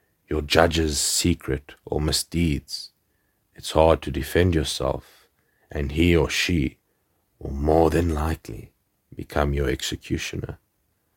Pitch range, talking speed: 75-90 Hz, 115 wpm